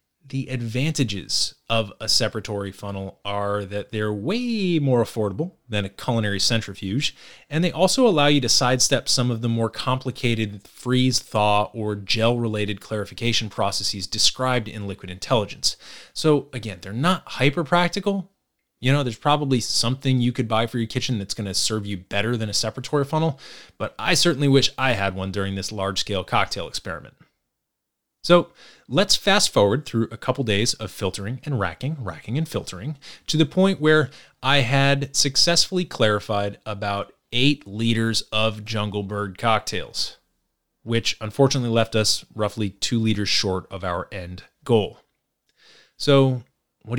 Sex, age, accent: male, 30-49, American